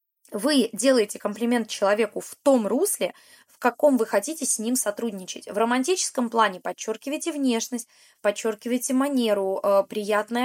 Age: 20-39